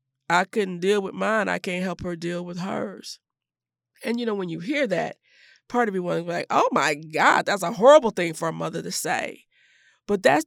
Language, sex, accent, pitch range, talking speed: English, female, American, 175-245 Hz, 220 wpm